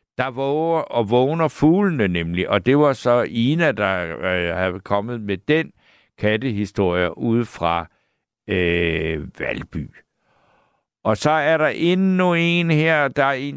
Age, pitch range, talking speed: 60-79, 110-155 Hz, 140 wpm